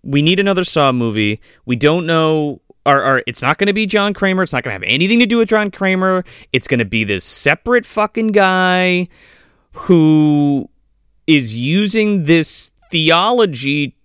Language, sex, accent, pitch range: English, male, American, 135-200 Hz